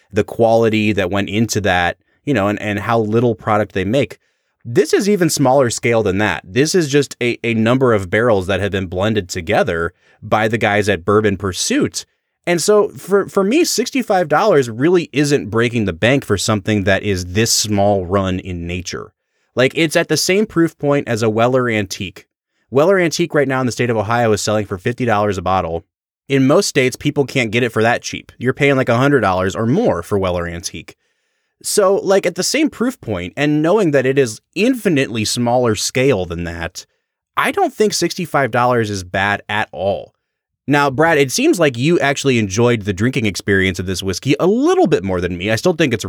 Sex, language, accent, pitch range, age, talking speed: male, English, American, 105-155 Hz, 30-49, 200 wpm